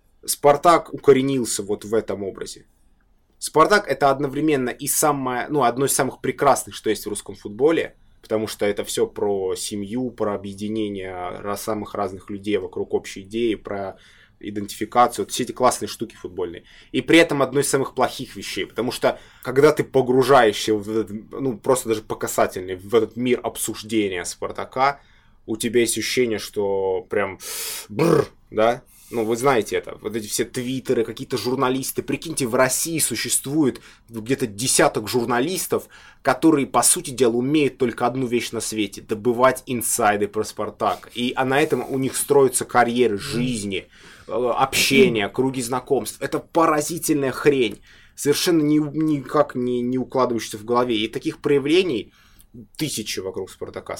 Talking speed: 150 wpm